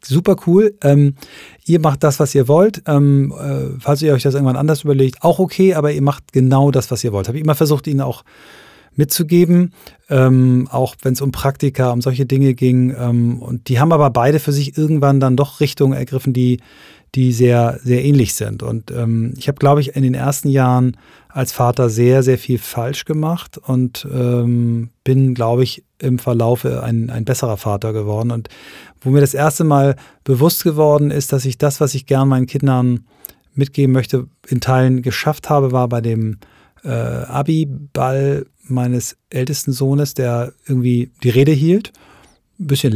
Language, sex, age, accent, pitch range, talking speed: German, male, 30-49, German, 120-140 Hz, 180 wpm